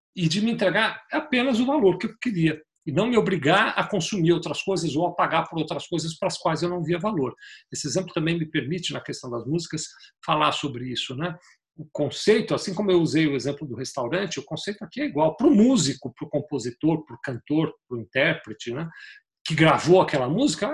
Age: 50-69